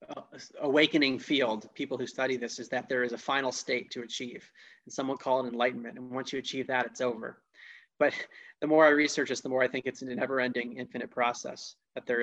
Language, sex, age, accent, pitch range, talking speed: English, male, 30-49, American, 130-155 Hz, 230 wpm